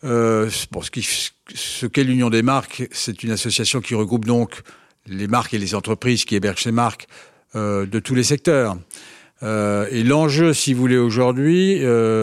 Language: French